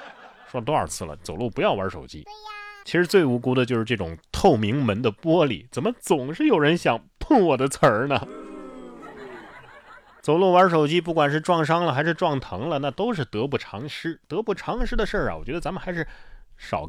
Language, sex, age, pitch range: Chinese, male, 30-49, 110-170 Hz